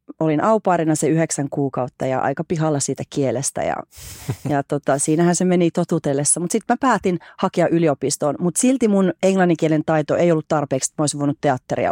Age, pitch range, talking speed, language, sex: 30-49, 145-180 Hz, 180 wpm, Finnish, female